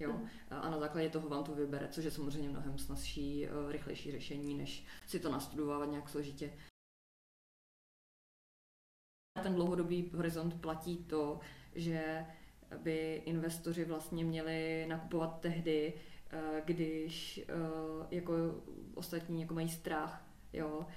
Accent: native